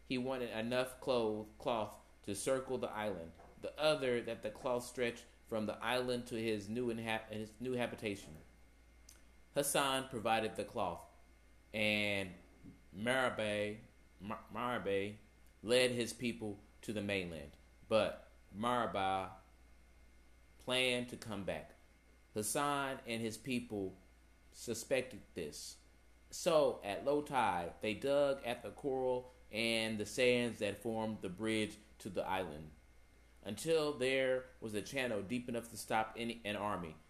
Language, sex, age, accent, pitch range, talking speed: English, male, 30-49, American, 95-120 Hz, 130 wpm